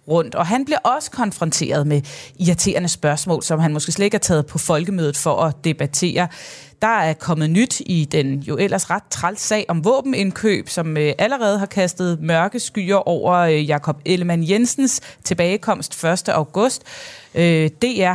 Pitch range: 160-205 Hz